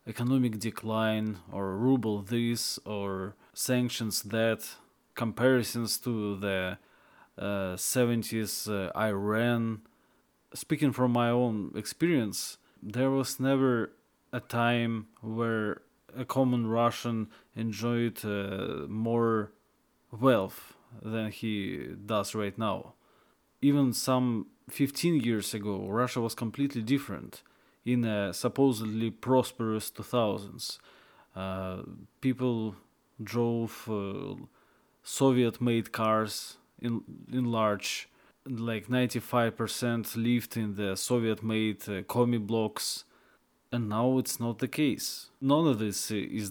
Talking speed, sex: 100 wpm, male